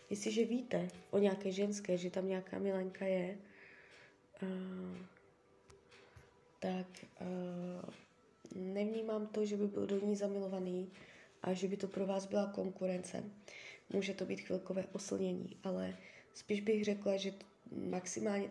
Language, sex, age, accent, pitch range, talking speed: Czech, female, 20-39, native, 185-205 Hz, 125 wpm